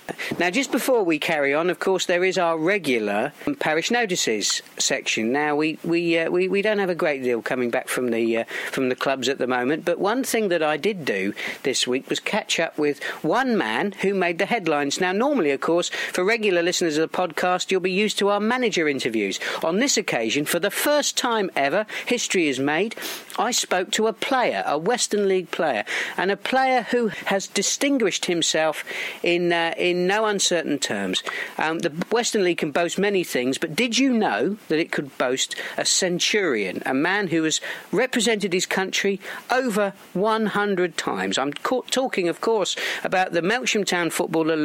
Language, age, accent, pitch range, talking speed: English, 50-69, British, 165-220 Hz, 200 wpm